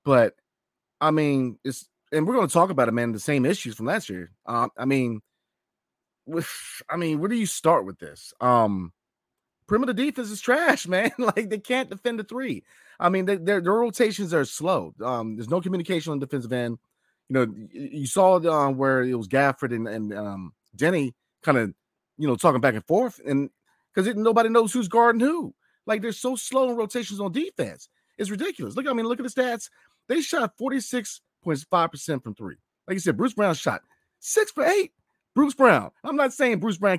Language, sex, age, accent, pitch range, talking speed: English, male, 30-49, American, 135-215 Hz, 200 wpm